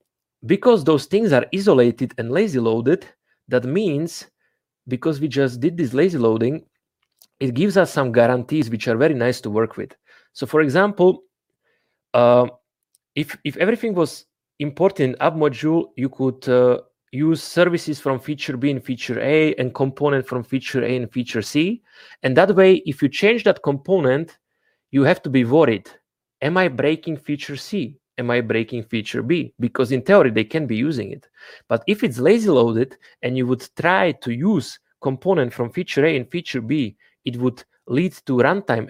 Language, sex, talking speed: English, male, 175 wpm